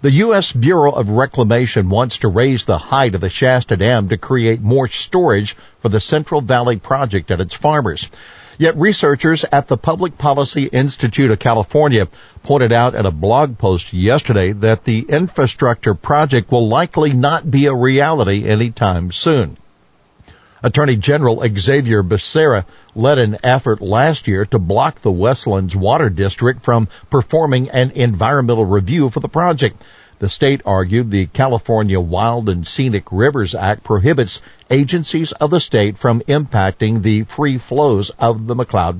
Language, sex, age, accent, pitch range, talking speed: English, male, 50-69, American, 105-140 Hz, 155 wpm